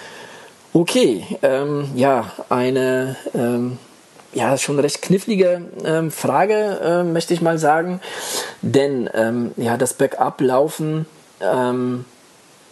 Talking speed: 110 wpm